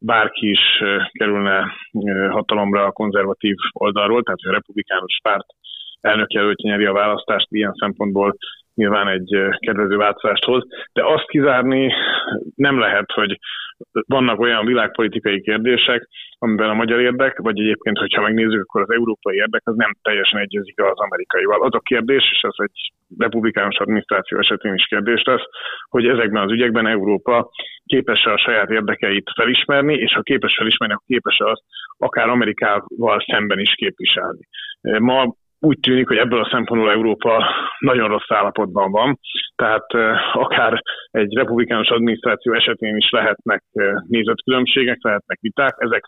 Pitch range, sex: 105-125 Hz, male